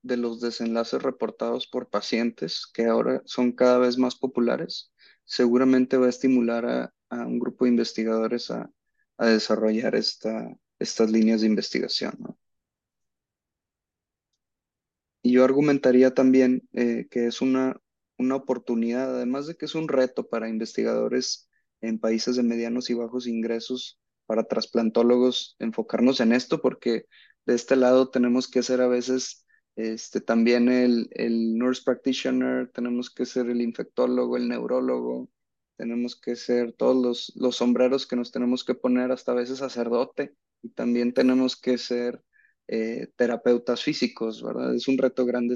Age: 20-39